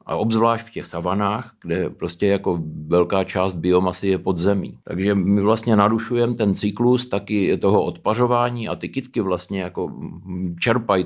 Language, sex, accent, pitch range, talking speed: Czech, male, native, 90-115 Hz, 150 wpm